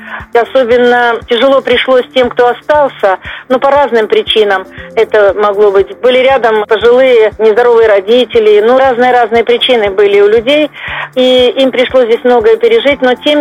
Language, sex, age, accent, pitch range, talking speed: Russian, female, 40-59, native, 225-285 Hz, 145 wpm